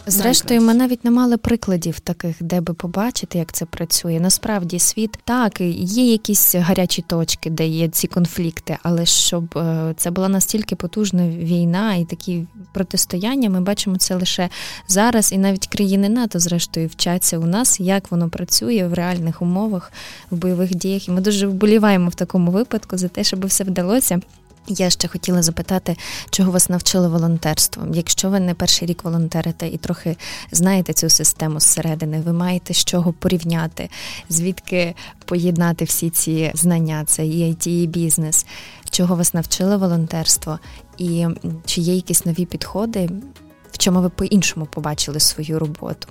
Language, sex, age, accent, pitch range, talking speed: Ukrainian, female, 20-39, native, 165-190 Hz, 155 wpm